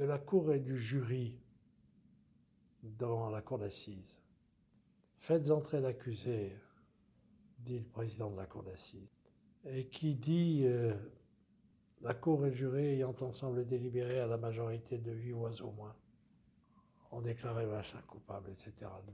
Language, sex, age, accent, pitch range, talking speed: French, male, 60-79, French, 115-145 Hz, 140 wpm